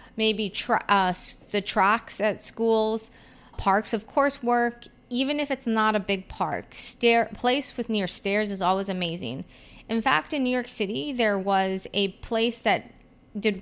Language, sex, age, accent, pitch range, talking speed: English, female, 30-49, American, 190-235 Hz, 170 wpm